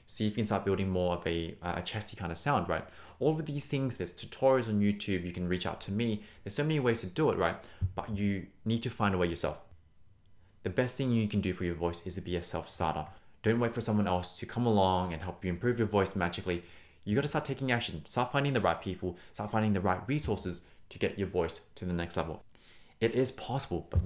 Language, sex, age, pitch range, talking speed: English, male, 20-39, 90-115 Hz, 255 wpm